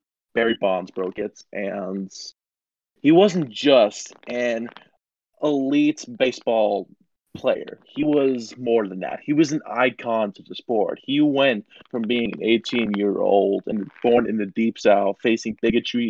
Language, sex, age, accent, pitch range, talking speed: English, male, 20-39, American, 110-140 Hz, 140 wpm